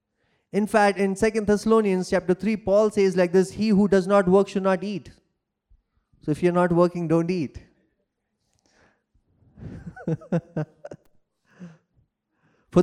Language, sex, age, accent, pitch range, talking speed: English, male, 20-39, Indian, 185-230 Hz, 125 wpm